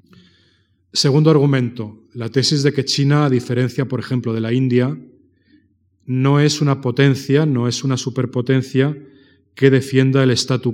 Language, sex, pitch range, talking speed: Spanish, male, 115-135 Hz, 145 wpm